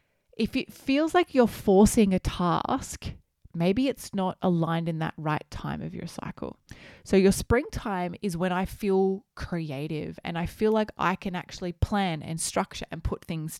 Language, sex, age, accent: English, female, 20-39, Australian